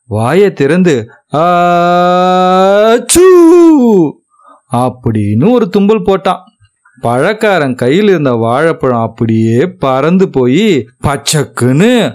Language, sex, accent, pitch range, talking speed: English, male, Indian, 130-200 Hz, 70 wpm